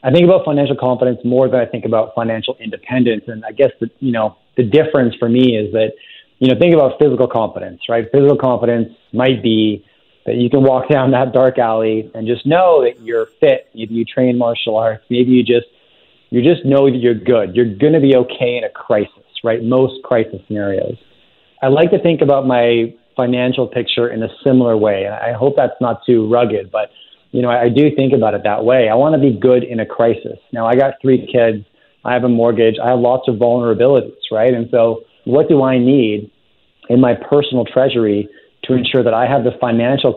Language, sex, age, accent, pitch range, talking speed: English, male, 30-49, American, 115-130 Hz, 215 wpm